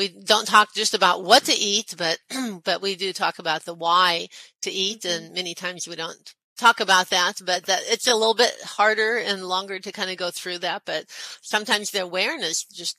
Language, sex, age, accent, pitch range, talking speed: English, female, 40-59, American, 175-205 Hz, 215 wpm